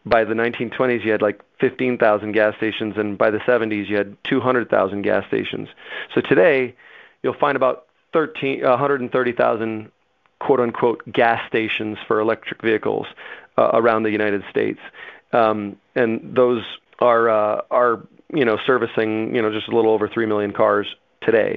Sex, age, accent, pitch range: male, 30-49, American, 105-120 Hz